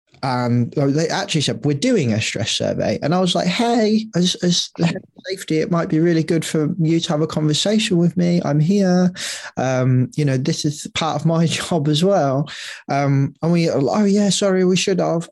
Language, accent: English, British